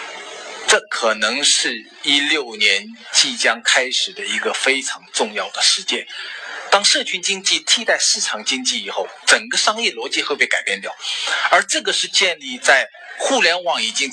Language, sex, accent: Chinese, male, native